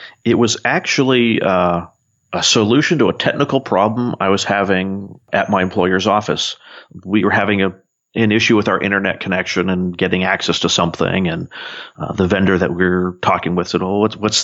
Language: English